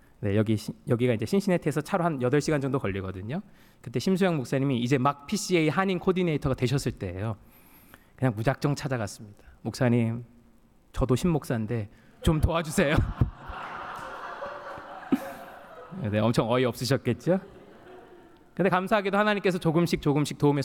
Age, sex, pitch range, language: 20-39, male, 115-155 Hz, Korean